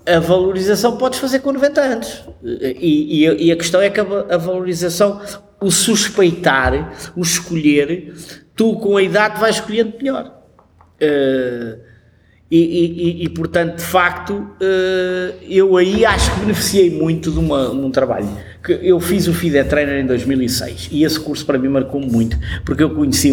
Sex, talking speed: male, 170 wpm